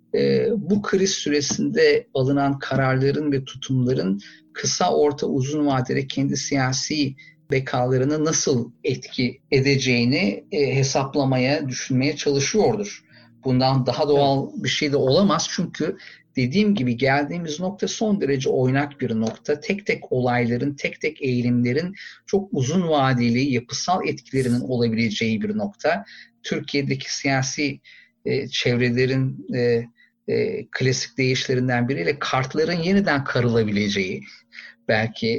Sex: male